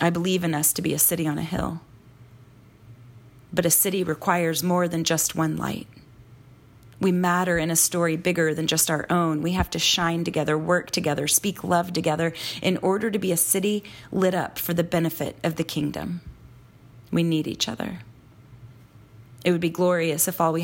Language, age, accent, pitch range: English, 30-49, American, 120-180 Hz